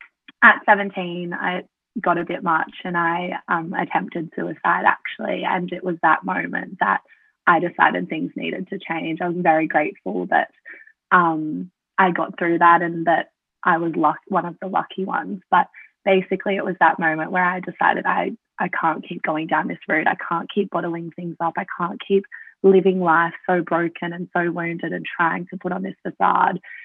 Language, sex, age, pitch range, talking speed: English, female, 20-39, 170-195 Hz, 190 wpm